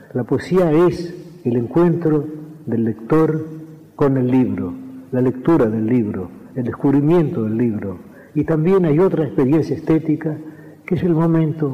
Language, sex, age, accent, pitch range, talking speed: Spanish, male, 50-69, Argentinian, 130-160 Hz, 145 wpm